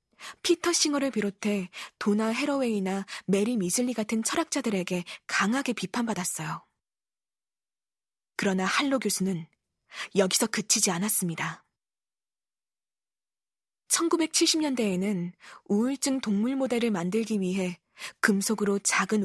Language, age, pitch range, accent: Korean, 20-39, 190-250 Hz, native